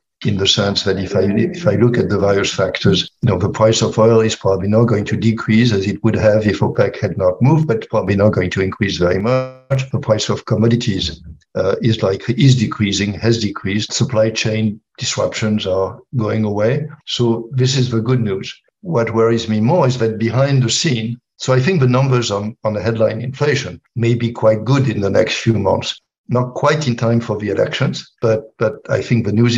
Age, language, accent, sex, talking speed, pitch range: 60-79, English, French, male, 215 wpm, 105-120 Hz